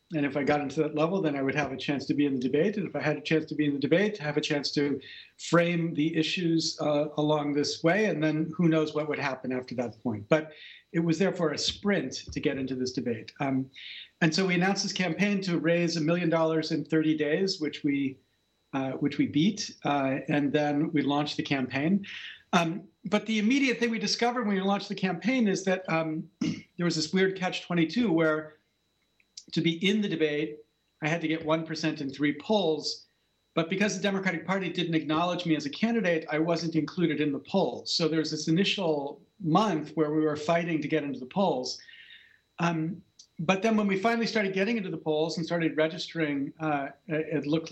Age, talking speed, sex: 50-69, 215 wpm, male